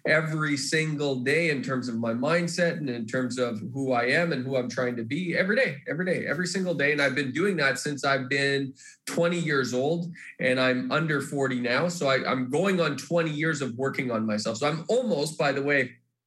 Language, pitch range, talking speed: English, 130-165 Hz, 220 wpm